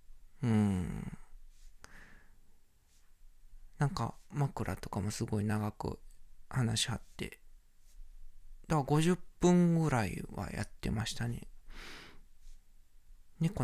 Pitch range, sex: 90-145 Hz, male